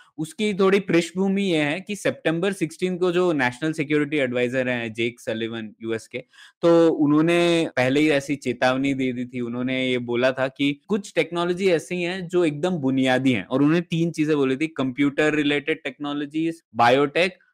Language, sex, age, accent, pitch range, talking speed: Hindi, male, 20-39, native, 145-185 Hz, 170 wpm